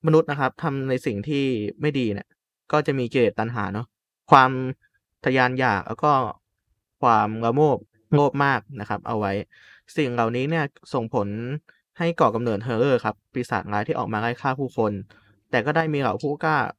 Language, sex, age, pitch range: Thai, male, 20-39, 110-140 Hz